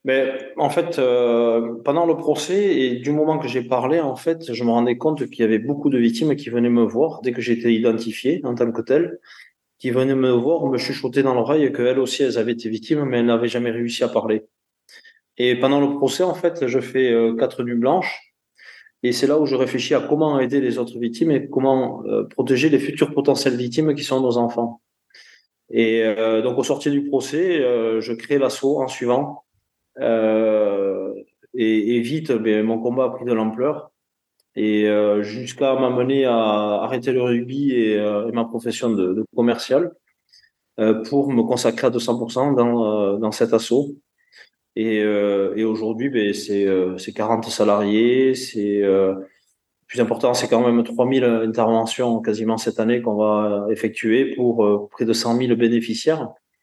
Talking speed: 180 wpm